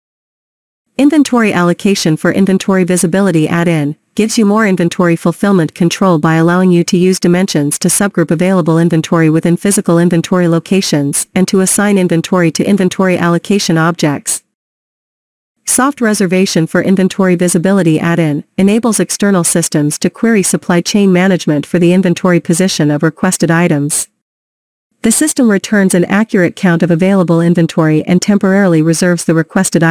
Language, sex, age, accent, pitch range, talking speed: English, female, 40-59, American, 170-195 Hz, 140 wpm